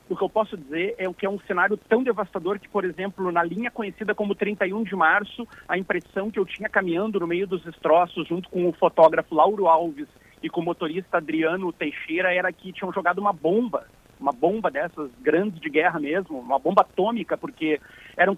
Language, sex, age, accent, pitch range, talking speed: Portuguese, male, 40-59, Brazilian, 170-205 Hz, 205 wpm